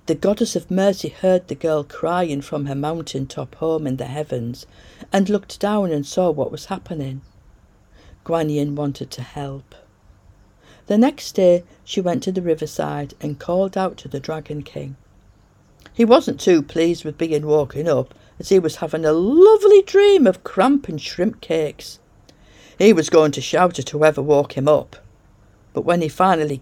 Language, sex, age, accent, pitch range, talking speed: English, female, 60-79, British, 145-210 Hz, 175 wpm